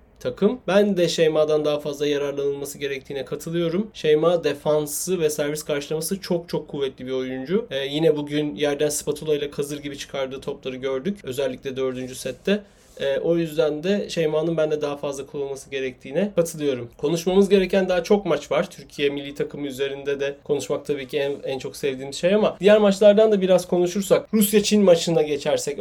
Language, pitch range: Turkish, 145-200 Hz